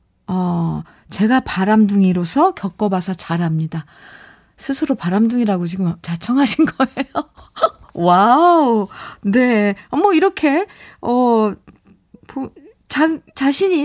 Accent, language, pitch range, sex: native, Korean, 185-290 Hz, female